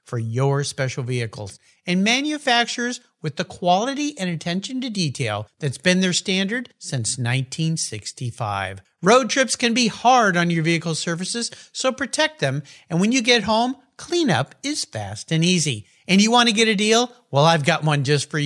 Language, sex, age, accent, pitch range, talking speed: English, male, 50-69, American, 140-230 Hz, 175 wpm